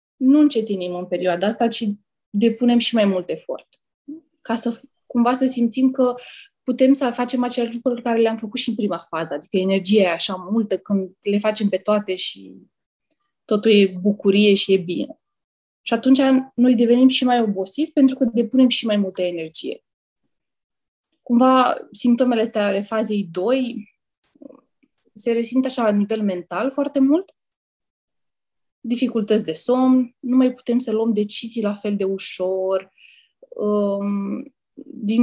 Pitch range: 205-255 Hz